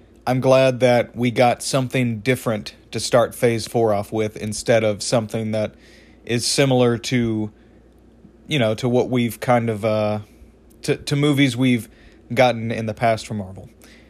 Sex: male